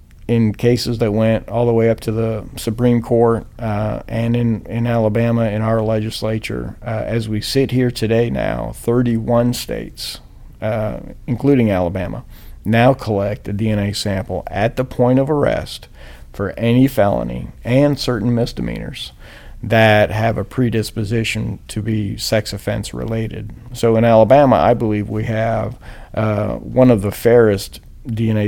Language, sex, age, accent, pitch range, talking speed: English, male, 50-69, American, 105-120 Hz, 145 wpm